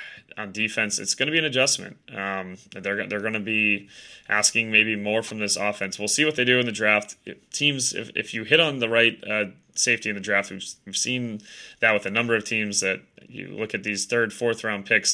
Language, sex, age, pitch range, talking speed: English, male, 20-39, 100-110 Hz, 240 wpm